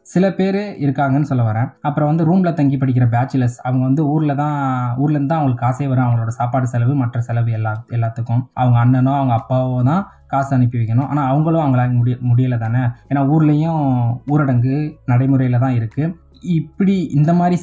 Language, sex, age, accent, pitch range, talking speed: Tamil, male, 20-39, native, 125-150 Hz, 165 wpm